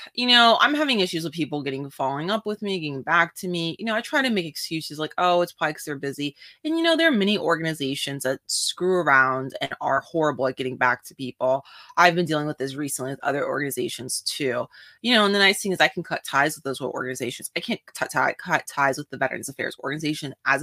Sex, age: female, 20-39